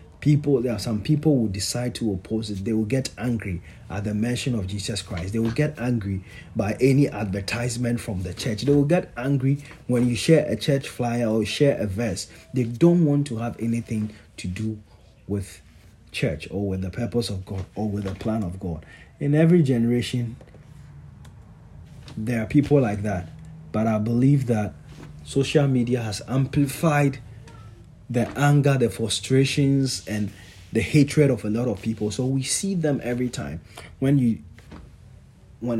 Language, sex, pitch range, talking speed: English, male, 110-140 Hz, 175 wpm